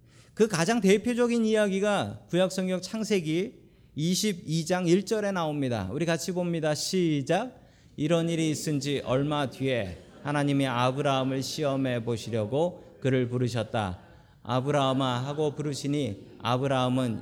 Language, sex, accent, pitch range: Korean, male, native, 125-185 Hz